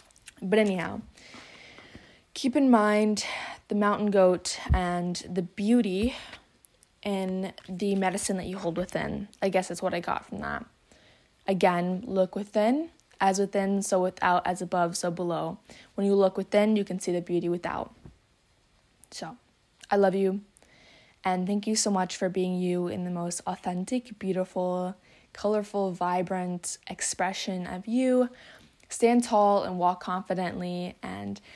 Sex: female